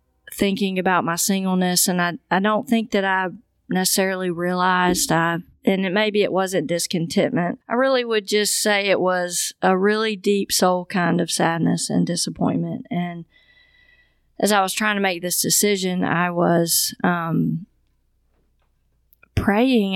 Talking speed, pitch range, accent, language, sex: 145 wpm, 170-205 Hz, American, English, female